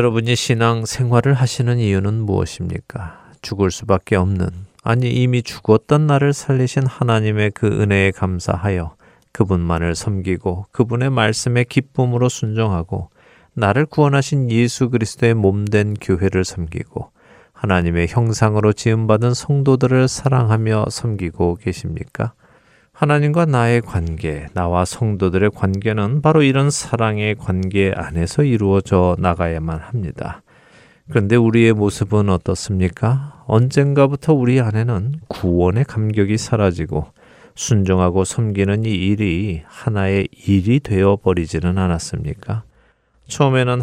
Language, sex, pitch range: Korean, male, 95-125 Hz